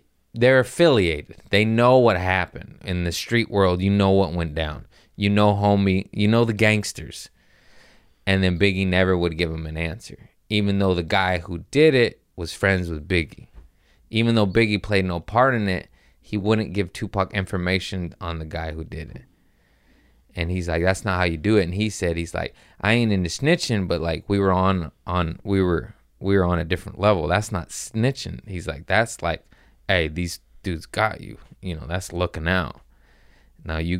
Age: 20-39